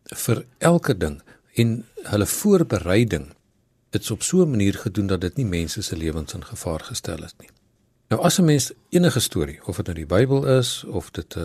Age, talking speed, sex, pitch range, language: 60-79, 190 wpm, male, 95-125 Hz, Dutch